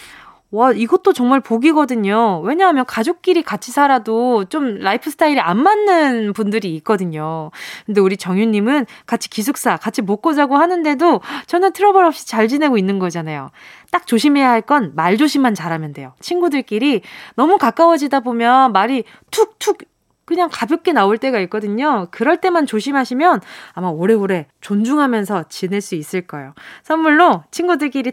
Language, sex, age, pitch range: Korean, female, 20-39, 210-320 Hz